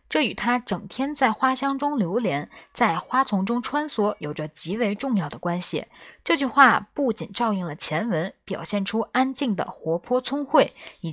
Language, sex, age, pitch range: Chinese, female, 20-39, 185-260 Hz